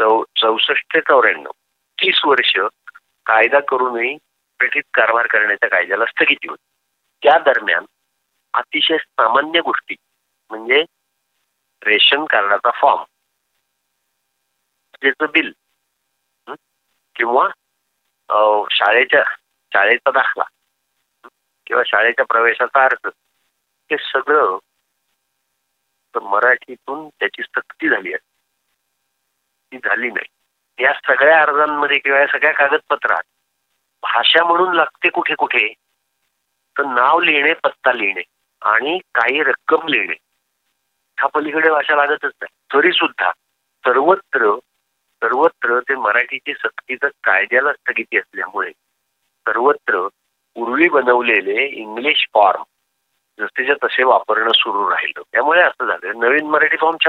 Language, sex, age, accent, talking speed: English, male, 50-69, Indian, 60 wpm